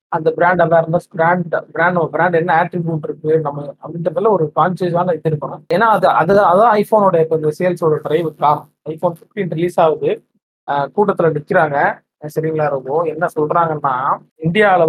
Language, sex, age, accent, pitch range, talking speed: Tamil, male, 20-39, native, 150-185 Hz, 105 wpm